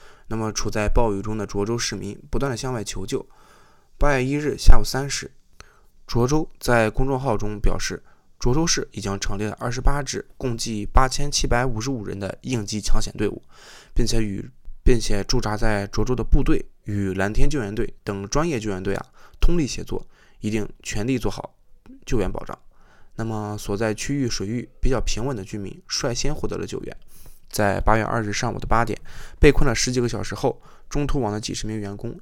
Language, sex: Chinese, male